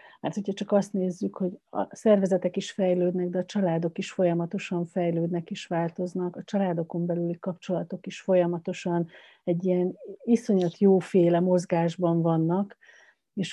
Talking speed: 140 wpm